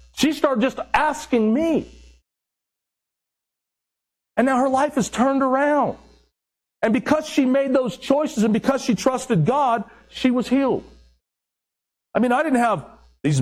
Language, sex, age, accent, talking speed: English, male, 50-69, American, 145 wpm